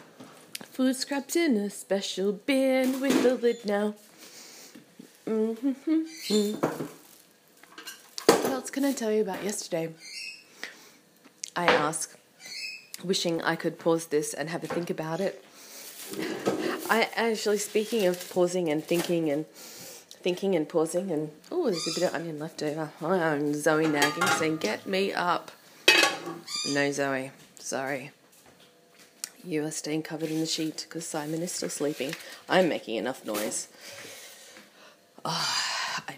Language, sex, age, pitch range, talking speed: English, female, 30-49, 150-205 Hz, 130 wpm